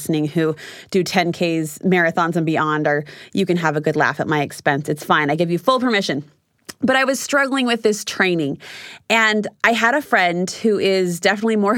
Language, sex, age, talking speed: English, female, 30-49, 200 wpm